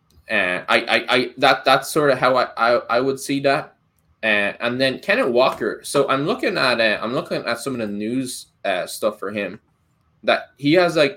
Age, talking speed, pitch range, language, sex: 10-29, 225 wpm, 95-130 Hz, English, male